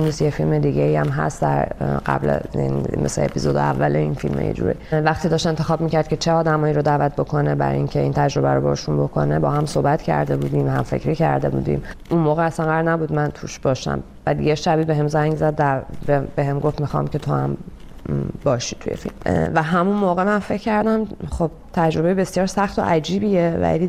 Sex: female